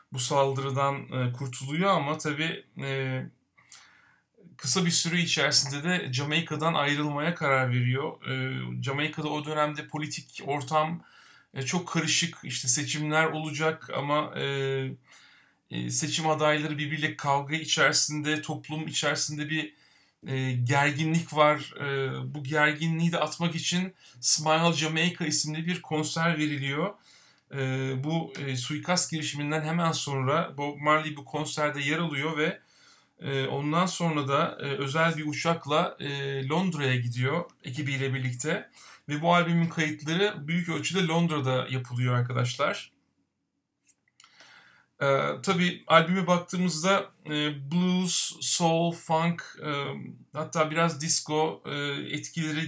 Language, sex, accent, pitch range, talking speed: Turkish, male, native, 140-165 Hz, 100 wpm